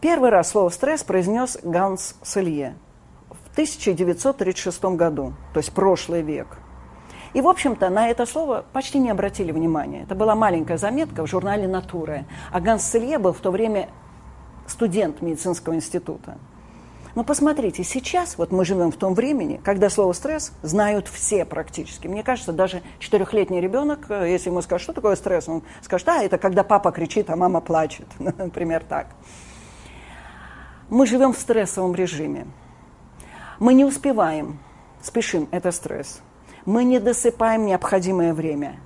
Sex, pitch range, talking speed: female, 170-220 Hz, 145 wpm